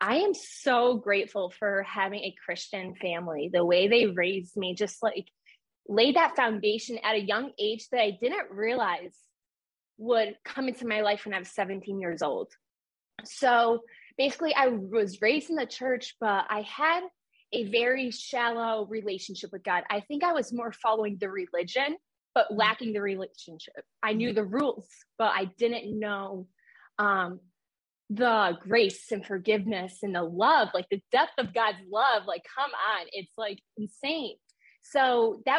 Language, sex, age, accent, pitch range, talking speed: English, female, 20-39, American, 200-245 Hz, 165 wpm